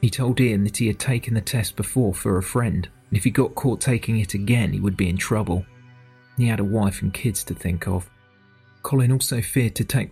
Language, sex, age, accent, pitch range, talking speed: English, male, 40-59, British, 100-120 Hz, 235 wpm